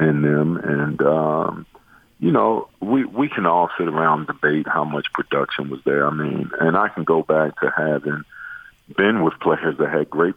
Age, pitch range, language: 40-59, 75-85 Hz, English